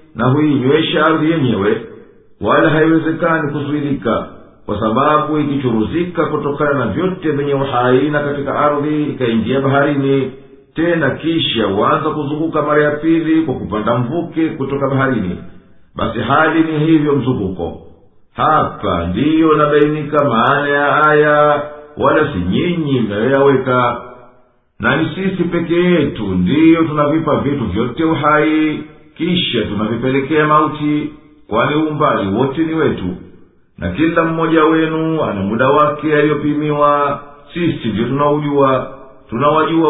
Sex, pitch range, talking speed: male, 130-155 Hz, 110 wpm